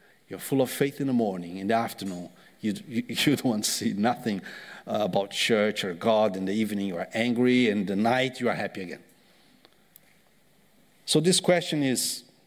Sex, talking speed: male, 185 wpm